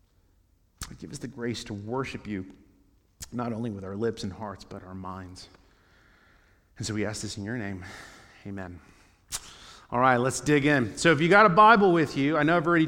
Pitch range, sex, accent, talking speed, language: 115-150 Hz, male, American, 200 wpm, English